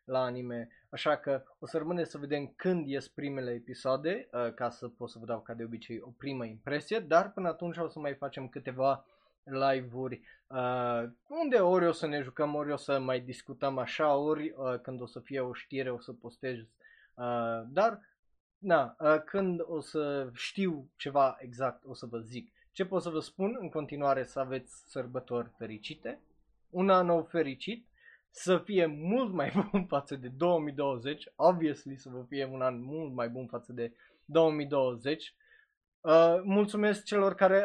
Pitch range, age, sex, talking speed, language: 130-175 Hz, 20-39, male, 170 wpm, Romanian